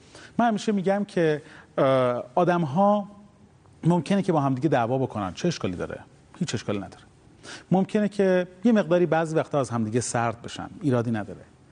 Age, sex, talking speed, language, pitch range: 30-49, male, 155 wpm, Persian, 120-160 Hz